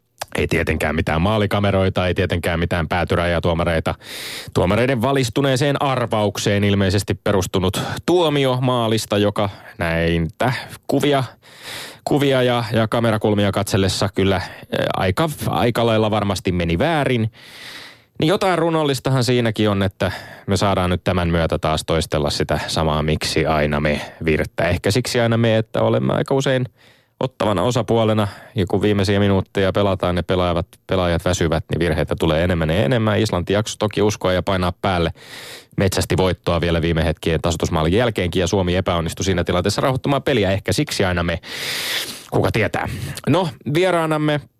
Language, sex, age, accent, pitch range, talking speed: Finnish, male, 20-39, native, 90-120 Hz, 140 wpm